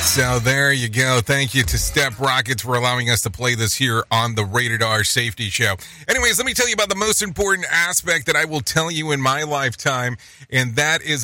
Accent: American